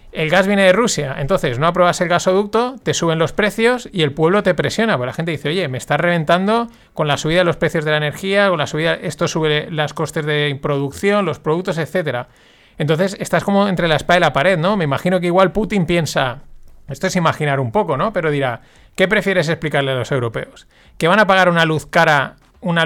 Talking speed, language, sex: 225 wpm, Spanish, male